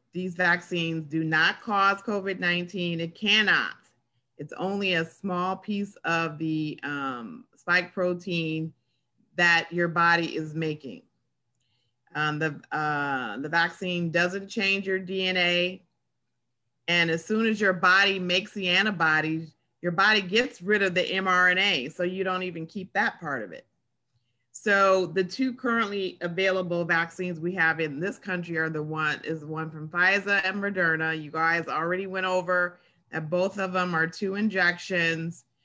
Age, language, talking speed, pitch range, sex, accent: 30-49, English, 150 wpm, 160-190 Hz, female, American